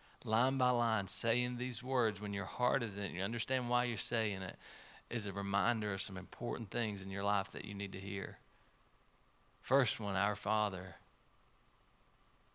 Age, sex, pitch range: 40-59, male, 100-120 Hz